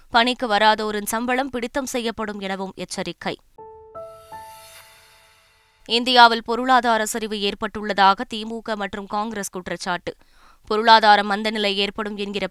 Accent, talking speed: native, 90 wpm